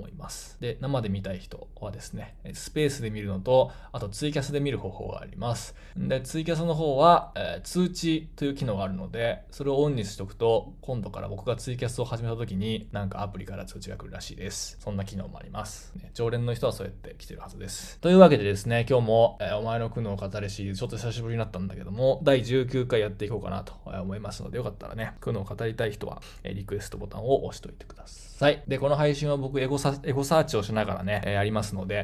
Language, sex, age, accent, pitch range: Japanese, male, 20-39, native, 100-125 Hz